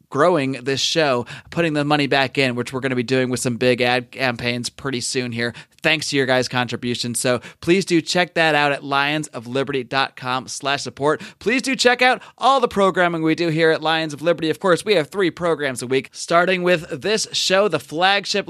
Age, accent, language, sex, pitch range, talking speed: 30-49, American, English, male, 135-190 Hz, 210 wpm